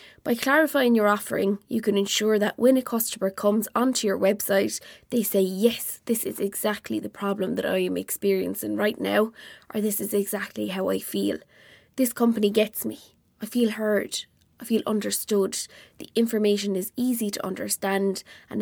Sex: female